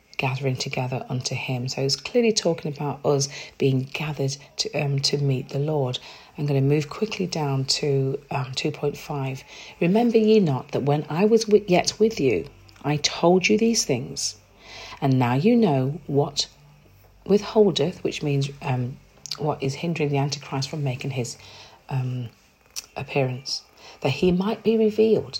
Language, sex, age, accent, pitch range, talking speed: English, female, 40-59, British, 135-175 Hz, 160 wpm